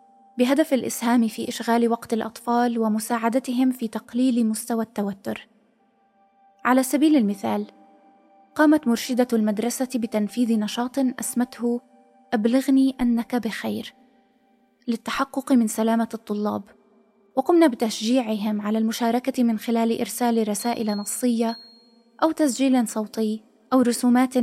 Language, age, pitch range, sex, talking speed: Arabic, 20-39, 220-250 Hz, female, 100 wpm